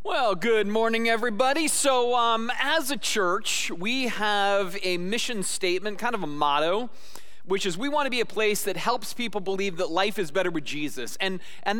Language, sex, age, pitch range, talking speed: English, male, 30-49, 175-220 Hz, 195 wpm